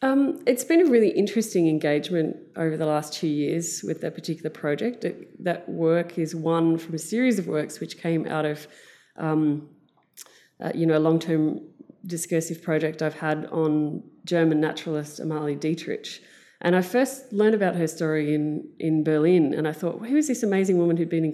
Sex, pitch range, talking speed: female, 155-170 Hz, 185 wpm